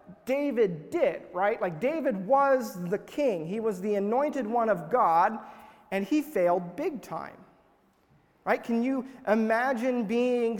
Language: English